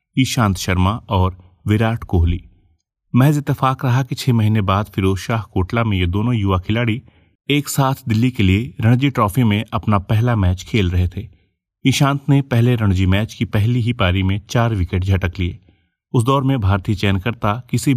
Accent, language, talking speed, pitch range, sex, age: native, Hindi, 180 wpm, 95-125 Hz, male, 30-49